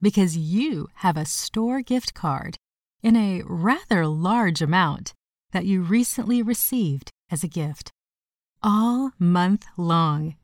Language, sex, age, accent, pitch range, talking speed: English, female, 30-49, American, 160-220 Hz, 125 wpm